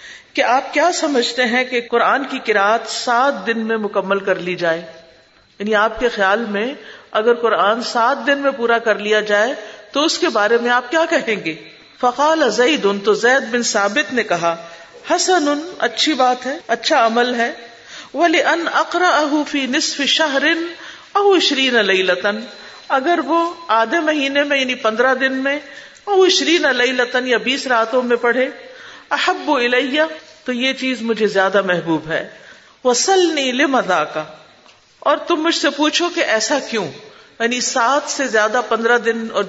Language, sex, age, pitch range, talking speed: Urdu, female, 50-69, 210-280 Hz, 145 wpm